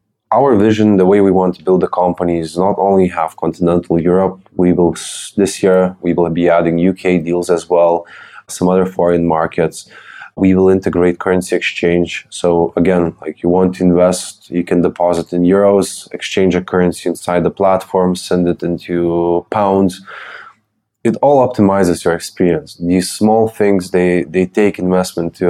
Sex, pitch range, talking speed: male, 85-95 Hz, 170 wpm